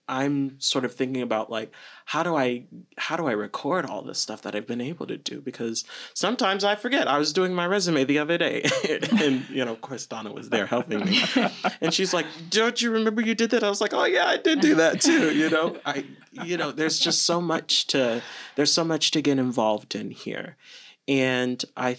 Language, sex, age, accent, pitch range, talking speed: English, male, 30-49, American, 120-155 Hz, 230 wpm